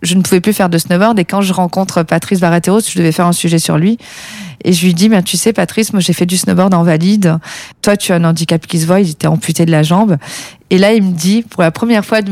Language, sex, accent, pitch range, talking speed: French, female, French, 170-205 Hz, 285 wpm